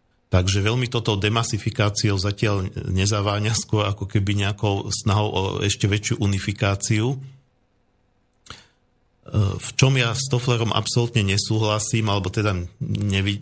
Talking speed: 110 wpm